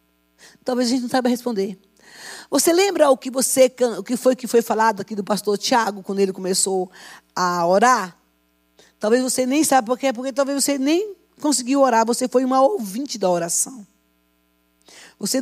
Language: Portuguese